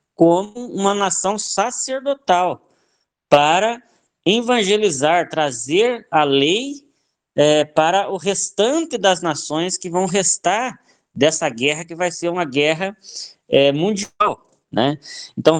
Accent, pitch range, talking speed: Brazilian, 135-195 Hz, 105 wpm